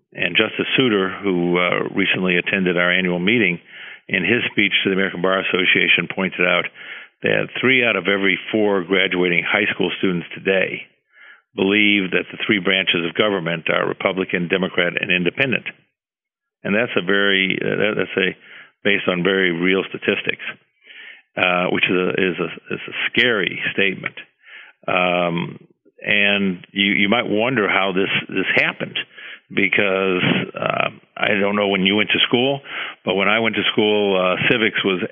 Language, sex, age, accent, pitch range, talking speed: English, male, 50-69, American, 90-100 Hz, 160 wpm